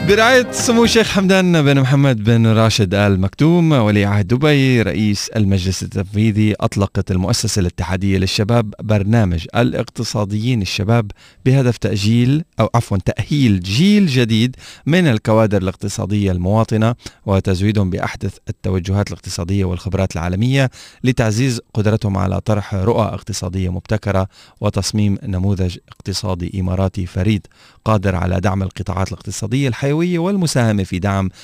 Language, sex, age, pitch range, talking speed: Arabic, male, 30-49, 95-115 Hz, 115 wpm